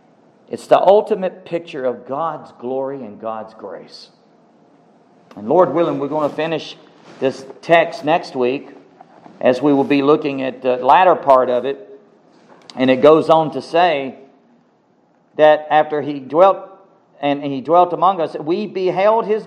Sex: male